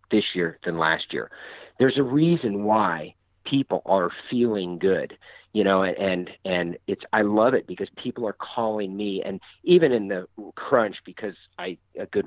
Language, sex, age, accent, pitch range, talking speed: English, male, 40-59, American, 95-130 Hz, 170 wpm